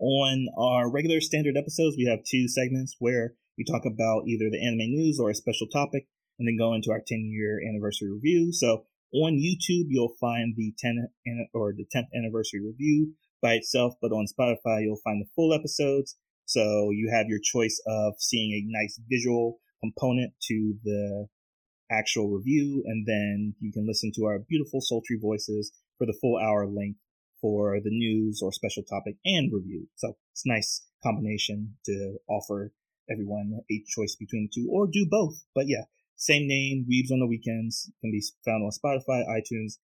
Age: 30-49